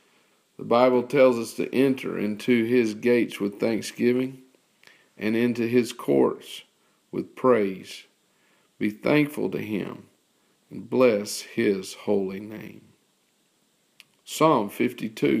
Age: 50-69